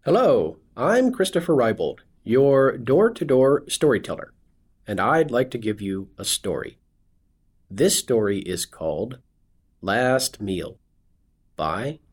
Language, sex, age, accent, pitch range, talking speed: English, male, 50-69, American, 85-125 Hz, 110 wpm